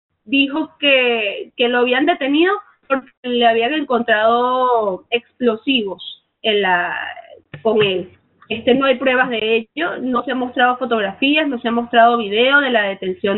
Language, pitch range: Spanish, 225-275 Hz